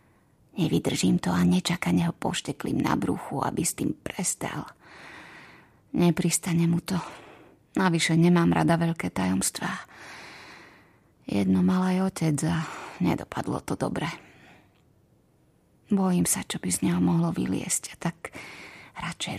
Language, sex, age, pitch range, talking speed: Slovak, female, 30-49, 165-190 Hz, 120 wpm